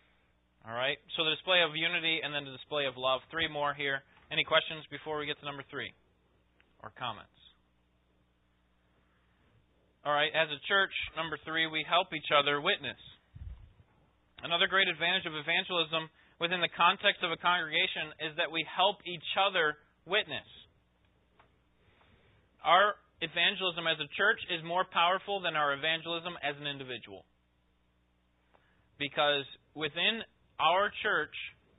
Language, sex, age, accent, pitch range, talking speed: English, male, 30-49, American, 130-175 Hz, 135 wpm